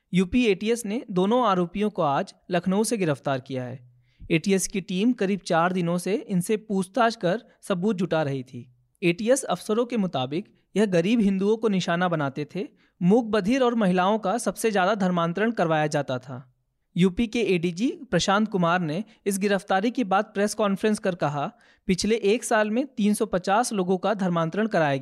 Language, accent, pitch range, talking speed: Hindi, native, 170-225 Hz, 170 wpm